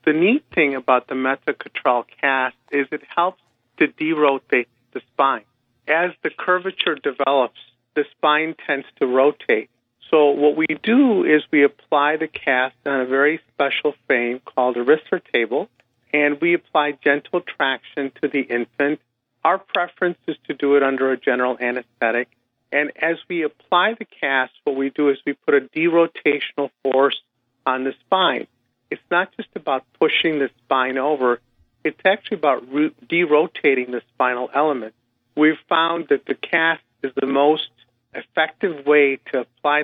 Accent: American